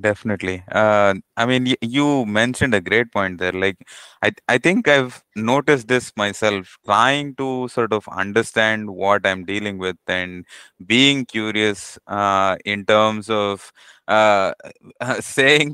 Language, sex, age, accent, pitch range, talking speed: English, male, 20-39, Indian, 100-115 Hz, 150 wpm